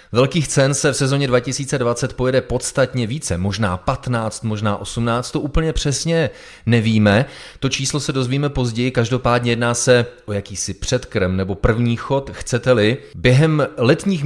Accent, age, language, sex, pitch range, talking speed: native, 30-49, Czech, male, 105-135 Hz, 145 wpm